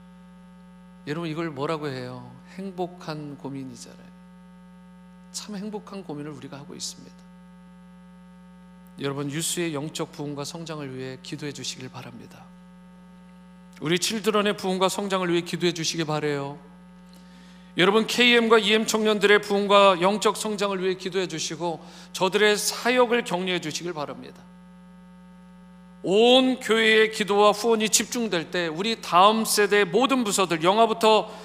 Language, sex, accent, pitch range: Korean, male, native, 155-185 Hz